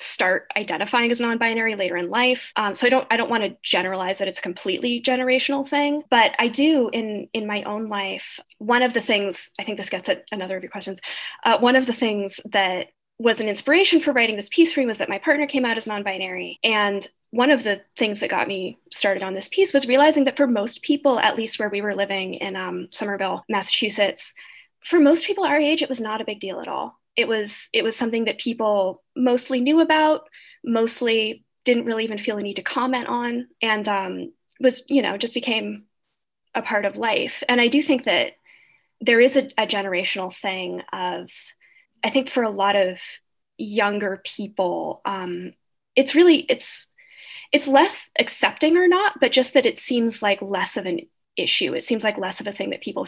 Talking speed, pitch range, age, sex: 210 wpm, 200-265 Hz, 10-29, female